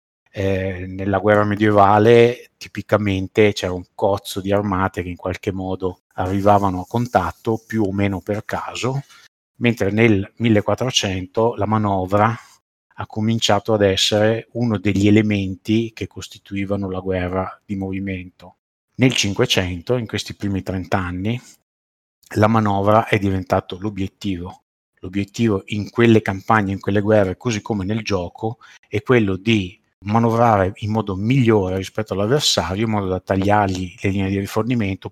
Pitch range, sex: 95-110 Hz, male